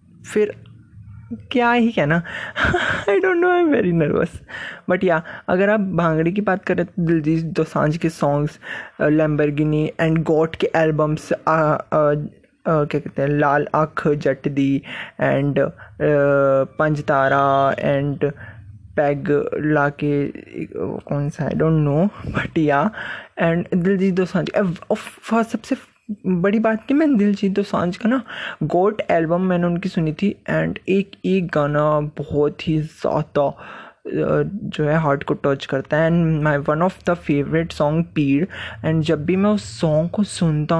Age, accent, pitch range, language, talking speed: 20-39, native, 150-195 Hz, Hindi, 150 wpm